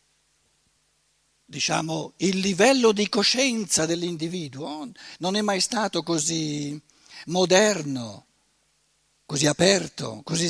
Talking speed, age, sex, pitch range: 90 wpm, 60-79, male, 155-210 Hz